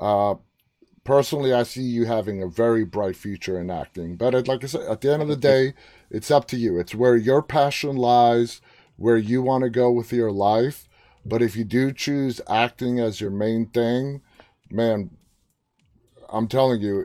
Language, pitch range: English, 110-135 Hz